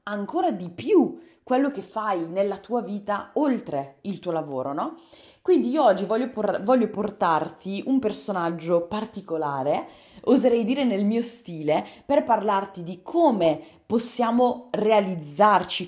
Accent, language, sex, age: native, Italian, female, 20-39